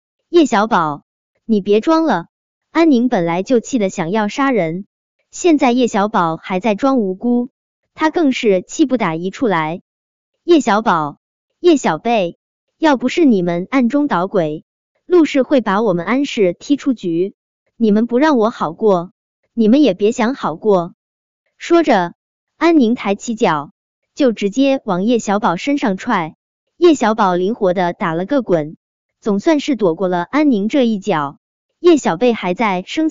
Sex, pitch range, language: male, 195-280 Hz, Chinese